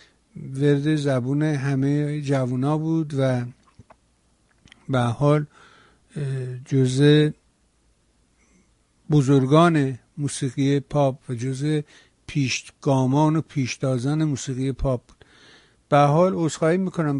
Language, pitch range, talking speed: Persian, 130-150 Hz, 85 wpm